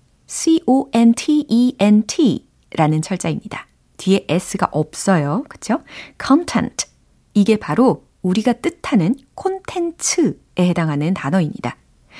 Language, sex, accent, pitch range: Korean, female, native, 165-255 Hz